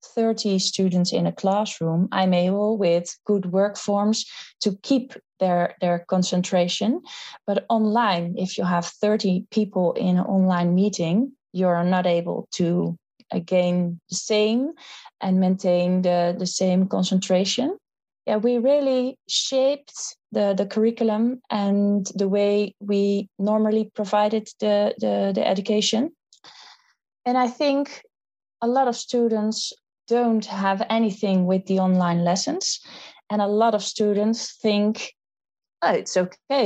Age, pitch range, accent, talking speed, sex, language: 20-39, 185-225 Hz, Dutch, 135 wpm, female, English